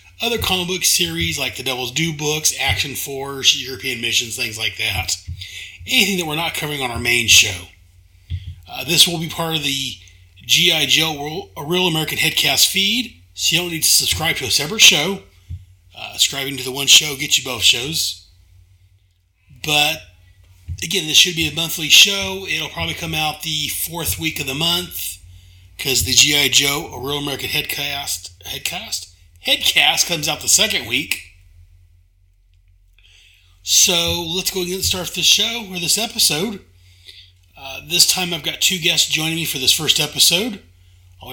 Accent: American